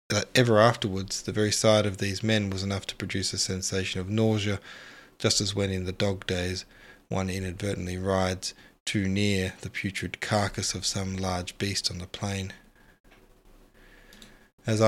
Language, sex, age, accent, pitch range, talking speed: English, male, 20-39, Australian, 95-110 Hz, 160 wpm